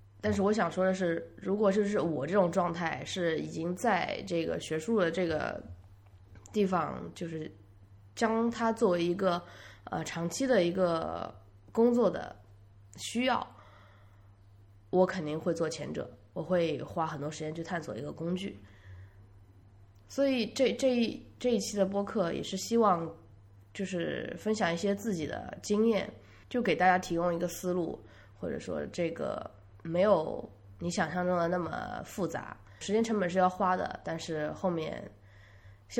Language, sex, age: Chinese, female, 20-39